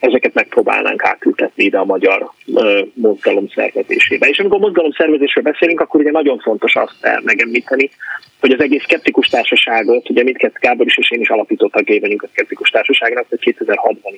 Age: 30-49